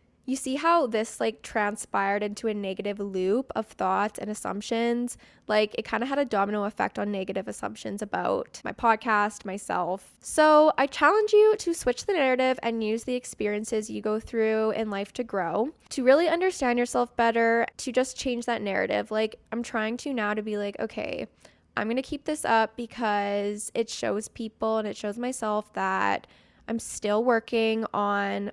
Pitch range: 205-240 Hz